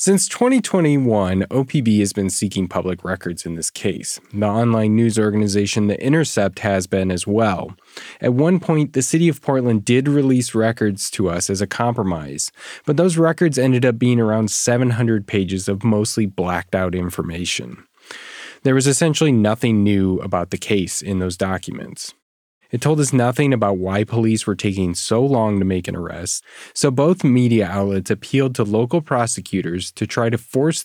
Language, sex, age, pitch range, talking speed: English, male, 20-39, 95-125 Hz, 170 wpm